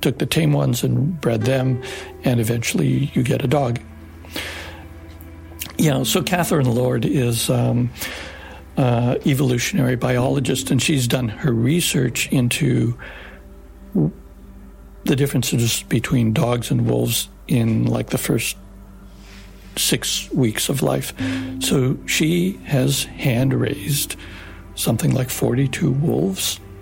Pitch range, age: 110-135 Hz, 60-79